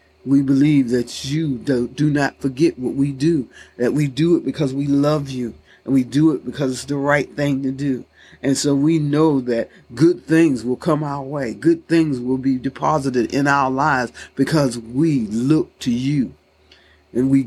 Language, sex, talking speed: English, male, 190 wpm